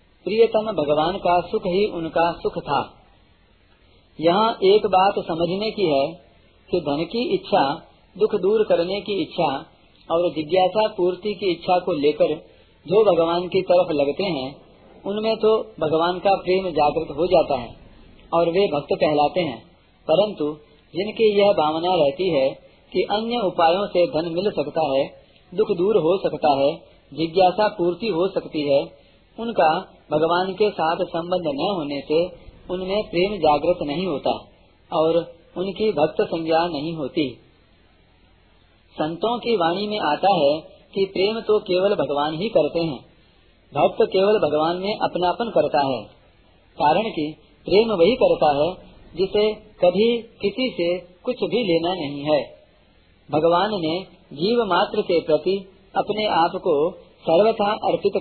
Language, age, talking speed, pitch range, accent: Hindi, 40-59, 145 wpm, 155-205 Hz, native